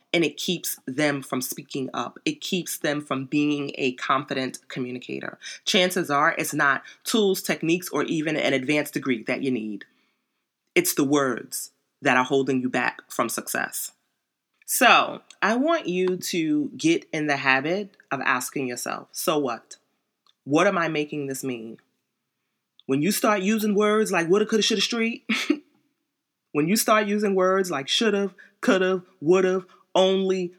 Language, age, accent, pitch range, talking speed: English, 30-49, American, 155-220 Hz, 155 wpm